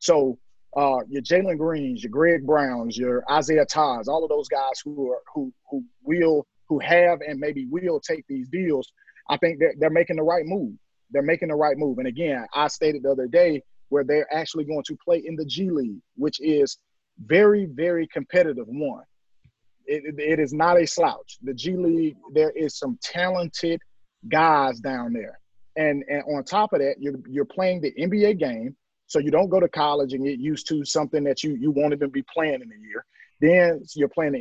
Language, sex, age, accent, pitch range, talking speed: English, male, 30-49, American, 140-170 Hz, 205 wpm